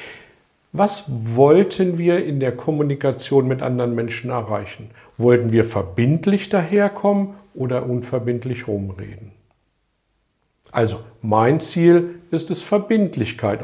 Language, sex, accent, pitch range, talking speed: German, male, German, 115-165 Hz, 100 wpm